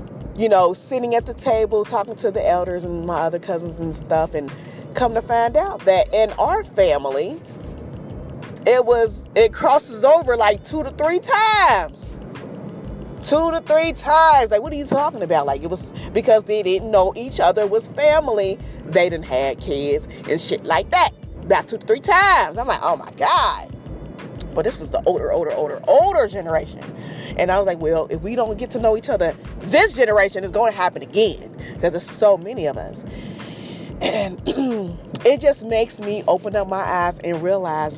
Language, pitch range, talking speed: English, 180-280 Hz, 190 wpm